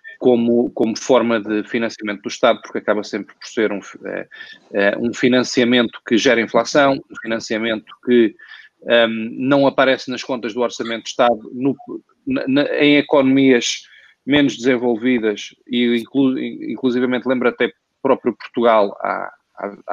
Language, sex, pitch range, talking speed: Portuguese, male, 105-125 Hz, 125 wpm